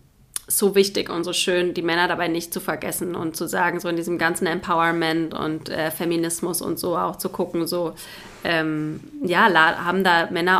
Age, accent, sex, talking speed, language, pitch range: 20-39, German, female, 185 wpm, German, 175-215 Hz